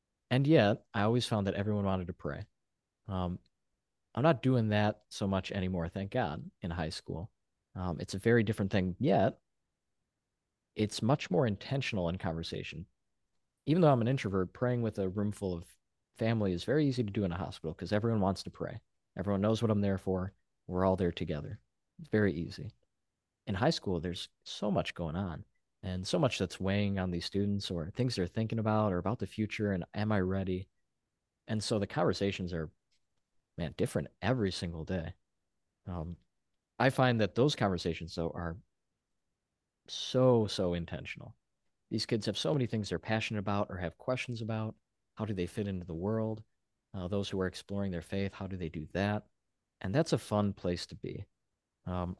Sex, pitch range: male, 90-110 Hz